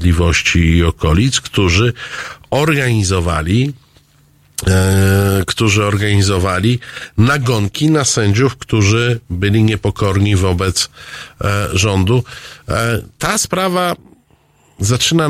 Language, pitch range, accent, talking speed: Polish, 95-120 Hz, native, 65 wpm